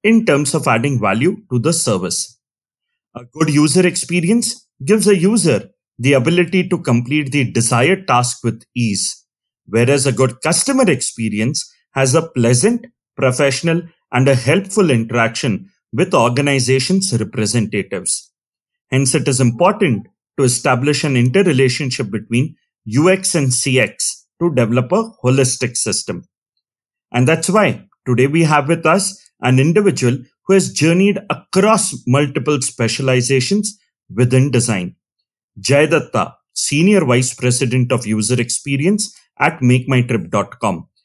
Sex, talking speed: male, 125 wpm